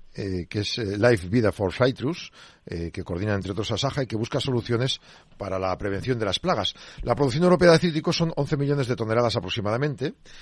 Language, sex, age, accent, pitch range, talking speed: Spanish, male, 50-69, Spanish, 105-130 Hz, 200 wpm